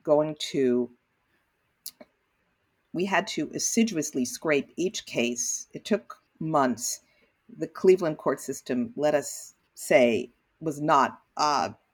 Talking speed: 110 wpm